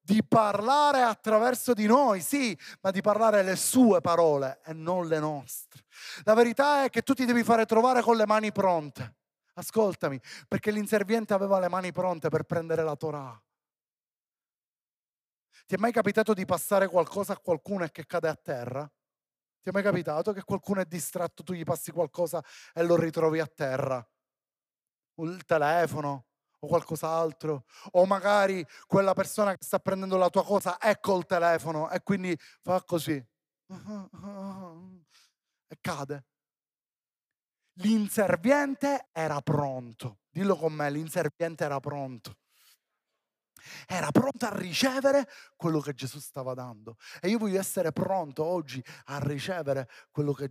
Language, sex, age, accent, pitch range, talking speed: Italian, male, 30-49, native, 160-215 Hz, 145 wpm